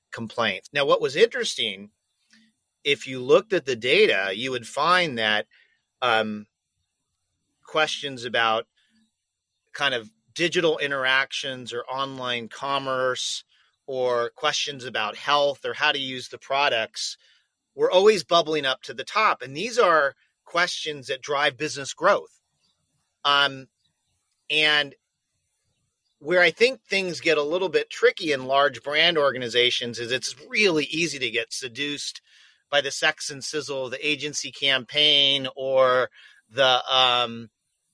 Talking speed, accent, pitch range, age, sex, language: 135 wpm, American, 125-170 Hz, 40-59, male, English